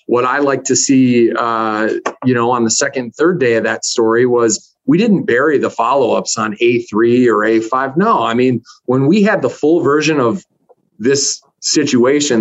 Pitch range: 115-145 Hz